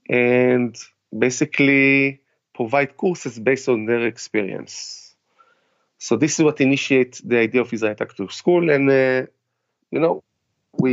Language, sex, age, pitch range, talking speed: English, male, 30-49, 120-150 Hz, 130 wpm